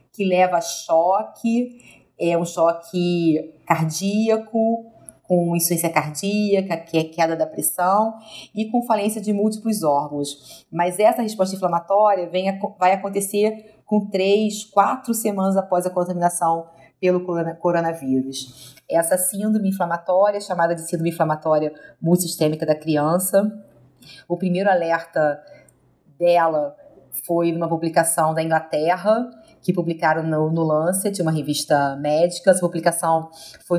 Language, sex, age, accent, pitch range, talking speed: Portuguese, female, 30-49, Brazilian, 165-205 Hz, 125 wpm